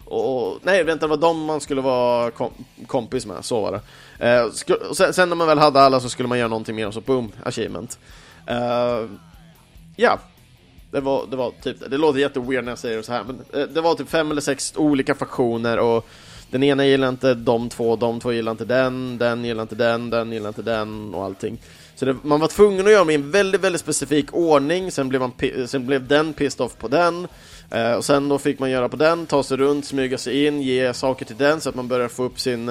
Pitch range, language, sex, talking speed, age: 115-145 Hz, Swedish, male, 245 wpm, 30-49